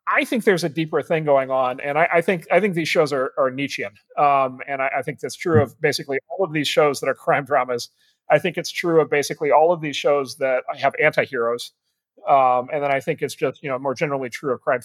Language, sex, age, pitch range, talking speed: English, male, 30-49, 130-170 Hz, 255 wpm